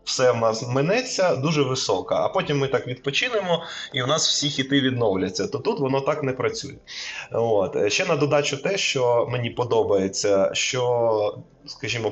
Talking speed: 165 wpm